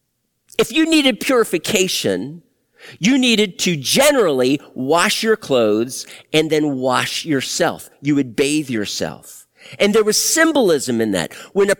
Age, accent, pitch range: 50-69, American, 160-240 Hz